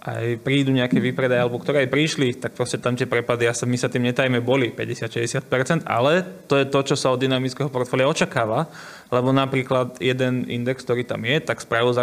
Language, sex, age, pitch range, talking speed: Slovak, male, 20-39, 125-145 Hz, 205 wpm